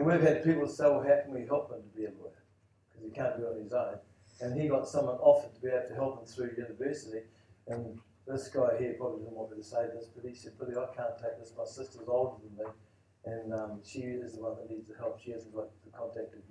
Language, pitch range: English, 110-135 Hz